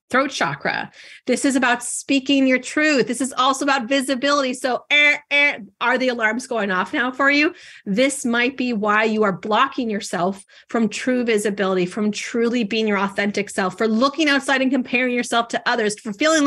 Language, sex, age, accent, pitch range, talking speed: English, female, 30-49, American, 210-275 Hz, 185 wpm